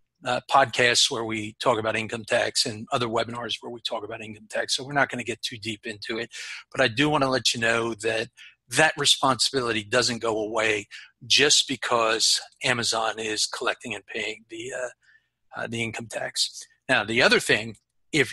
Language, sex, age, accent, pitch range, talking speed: English, male, 50-69, American, 115-155 Hz, 195 wpm